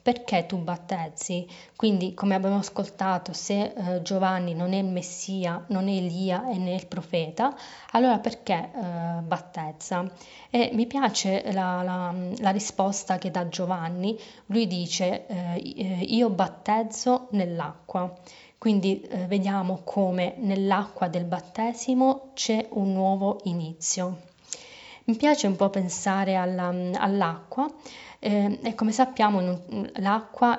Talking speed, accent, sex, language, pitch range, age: 125 wpm, native, female, Italian, 180-215 Hz, 20-39